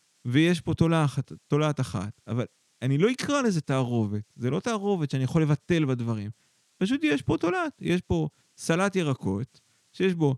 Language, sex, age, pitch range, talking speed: Hebrew, male, 30-49, 115-155 Hz, 160 wpm